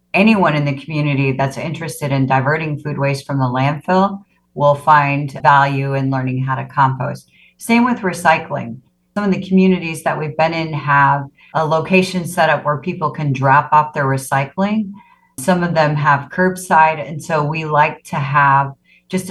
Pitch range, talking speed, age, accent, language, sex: 140-170 Hz, 175 wpm, 40-59, American, English, female